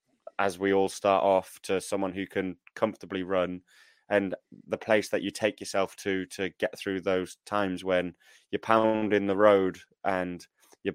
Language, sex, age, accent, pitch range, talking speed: English, male, 20-39, British, 95-110 Hz, 170 wpm